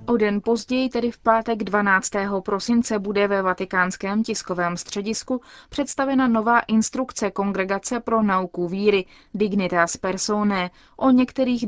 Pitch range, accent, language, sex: 185-230 Hz, native, Czech, female